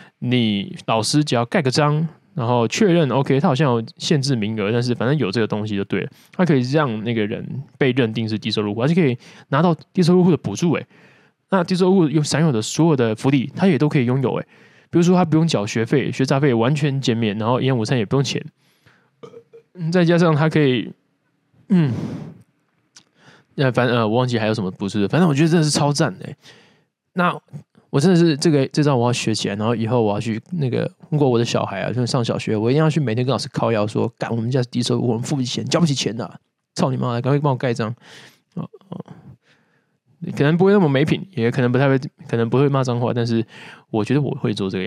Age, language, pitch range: 20-39, Chinese, 120-160 Hz